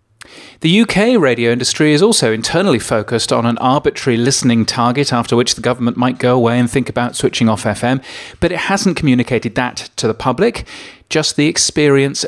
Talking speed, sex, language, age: 180 wpm, male, English, 40-59